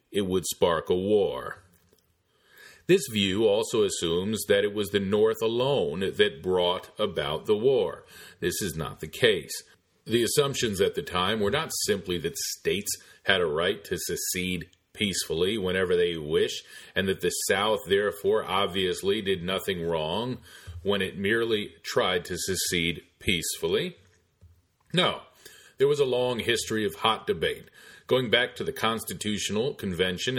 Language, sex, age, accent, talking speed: English, male, 40-59, American, 150 wpm